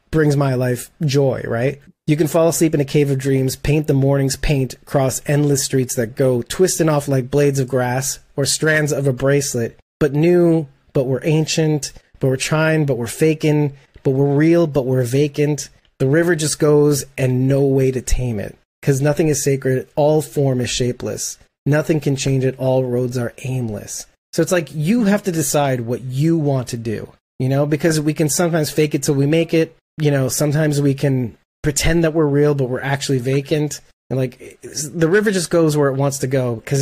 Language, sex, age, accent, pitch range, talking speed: English, male, 30-49, American, 130-155 Hz, 205 wpm